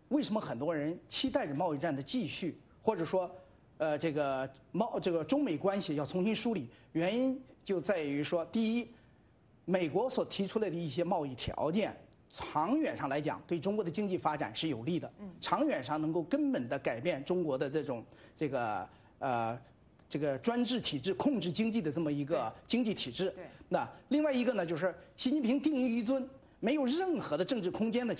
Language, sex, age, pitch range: English, male, 30-49, 160-250 Hz